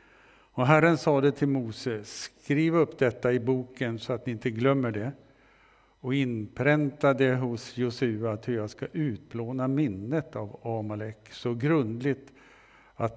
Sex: male